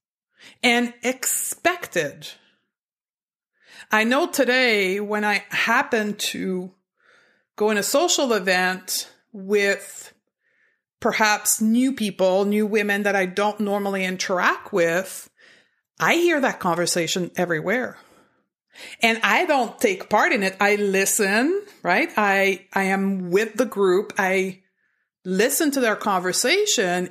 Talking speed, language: 115 wpm, English